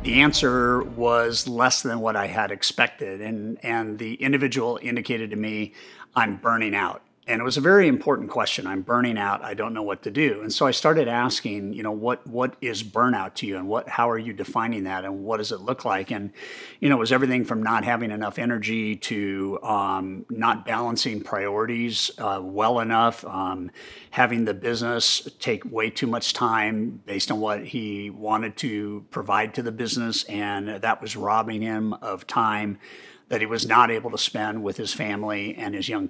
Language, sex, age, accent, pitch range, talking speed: English, male, 50-69, American, 105-120 Hz, 200 wpm